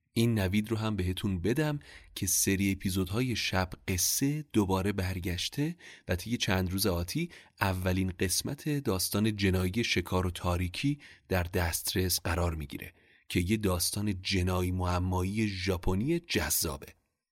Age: 30-49